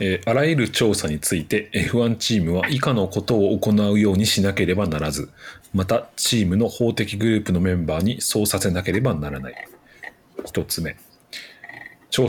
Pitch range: 95-110 Hz